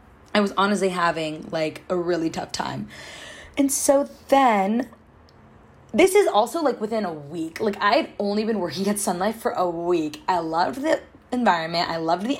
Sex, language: female, English